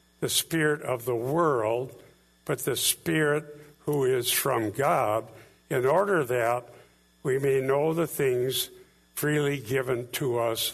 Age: 60-79